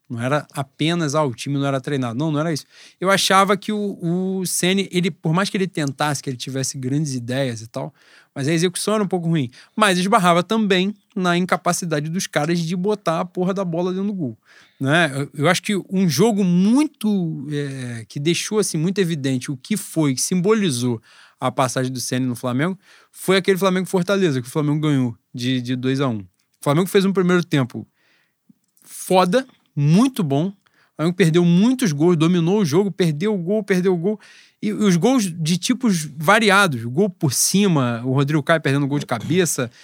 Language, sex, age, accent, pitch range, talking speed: Portuguese, male, 20-39, Brazilian, 140-190 Hz, 195 wpm